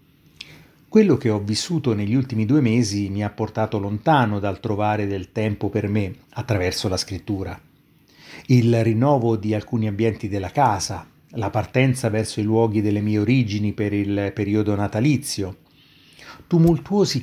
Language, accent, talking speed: Italian, native, 145 wpm